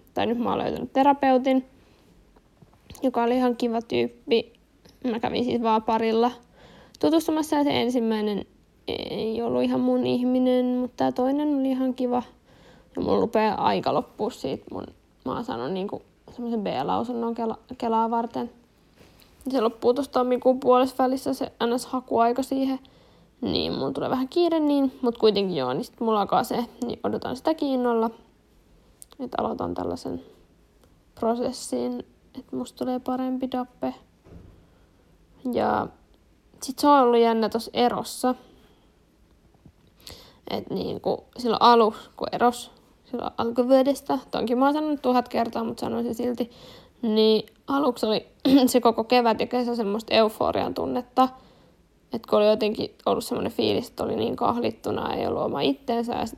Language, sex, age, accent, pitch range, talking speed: Finnish, female, 10-29, native, 225-255 Hz, 140 wpm